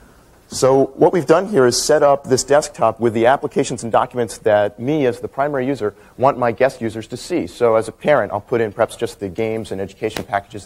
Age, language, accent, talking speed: 40-59, English, American, 230 wpm